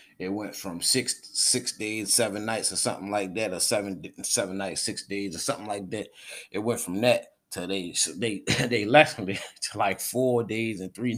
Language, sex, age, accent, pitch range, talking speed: English, male, 20-39, American, 110-135 Hz, 210 wpm